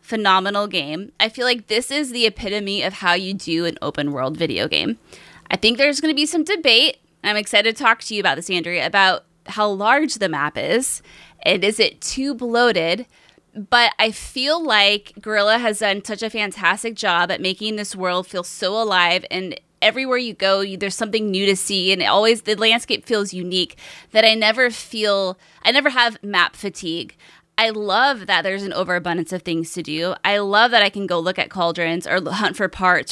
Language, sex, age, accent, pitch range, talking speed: English, female, 20-39, American, 180-225 Hz, 200 wpm